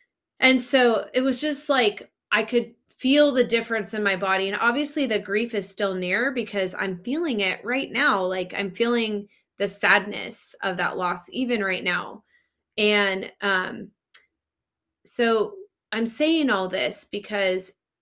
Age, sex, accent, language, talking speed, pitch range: 20-39, female, American, English, 155 wpm, 185-230 Hz